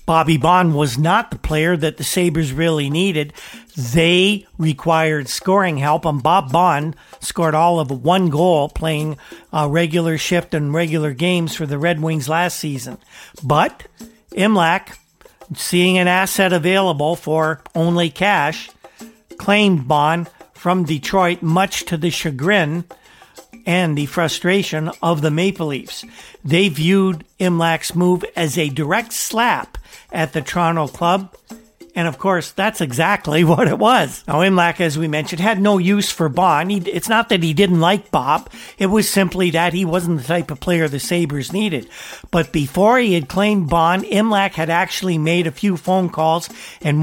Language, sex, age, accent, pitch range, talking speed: English, male, 50-69, American, 160-190 Hz, 160 wpm